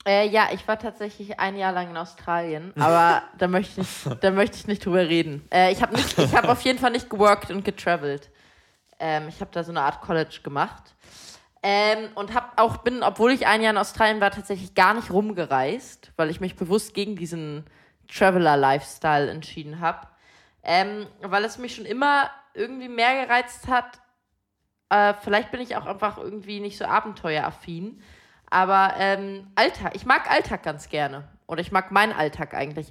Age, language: 20-39, German